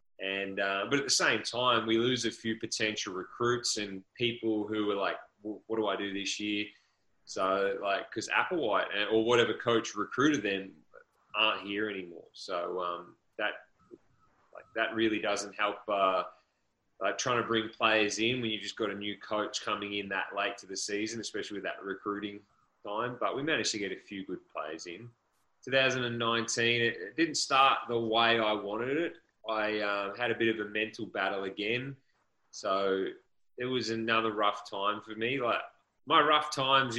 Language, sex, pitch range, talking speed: English, male, 100-115 Hz, 185 wpm